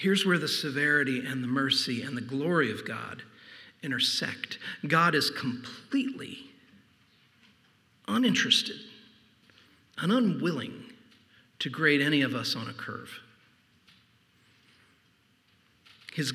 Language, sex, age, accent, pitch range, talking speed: English, male, 50-69, American, 125-160 Hz, 105 wpm